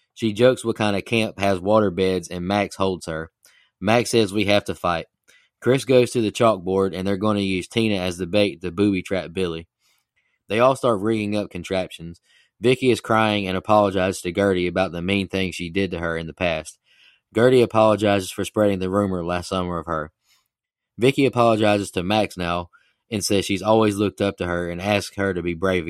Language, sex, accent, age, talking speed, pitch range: English, male, American, 20-39, 205 wpm, 90-110 Hz